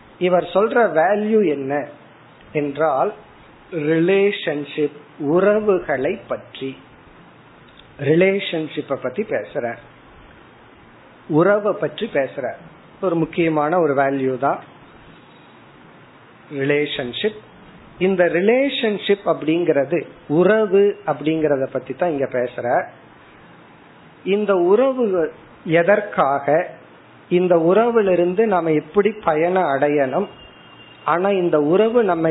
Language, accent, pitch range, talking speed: Tamil, native, 145-195 Hz, 65 wpm